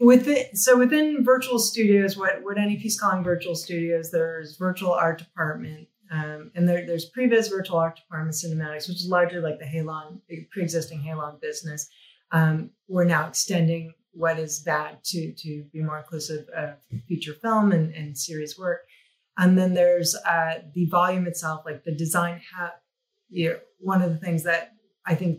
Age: 30-49